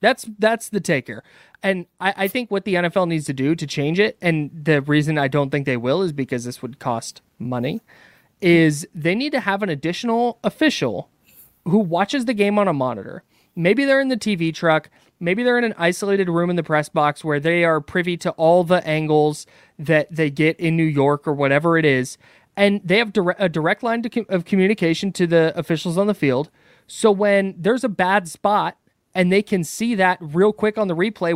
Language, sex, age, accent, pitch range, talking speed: English, male, 20-39, American, 155-205 Hz, 210 wpm